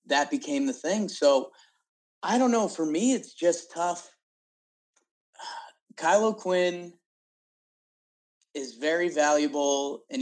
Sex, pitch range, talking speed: male, 140-220 Hz, 110 wpm